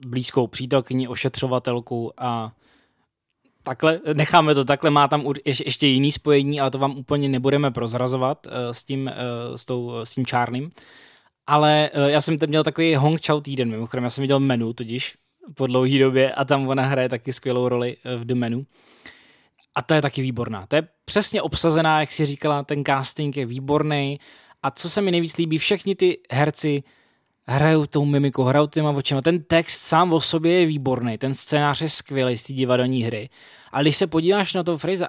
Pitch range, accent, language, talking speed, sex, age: 130-160 Hz, native, Czech, 180 wpm, male, 20-39